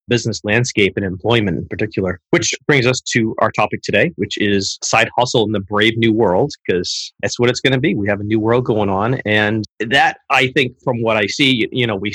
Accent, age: American, 30-49